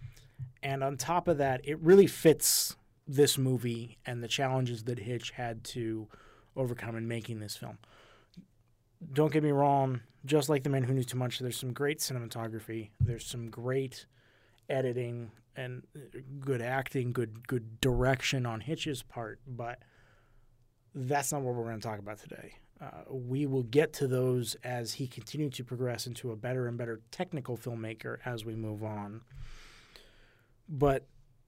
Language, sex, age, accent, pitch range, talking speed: English, male, 30-49, American, 115-145 Hz, 160 wpm